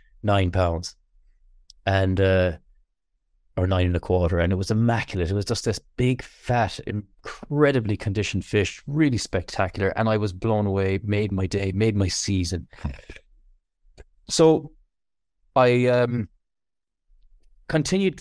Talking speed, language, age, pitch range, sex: 130 wpm, English, 30-49, 95-125 Hz, male